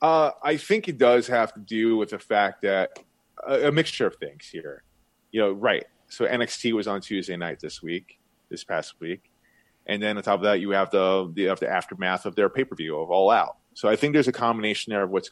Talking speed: 230 wpm